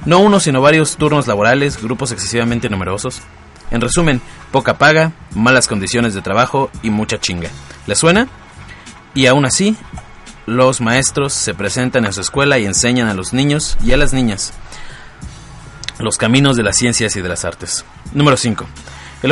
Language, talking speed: Spanish, 165 wpm